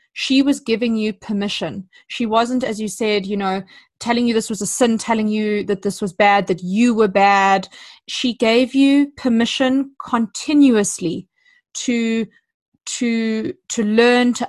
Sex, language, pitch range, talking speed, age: female, English, 205-240 Hz, 155 wpm, 20-39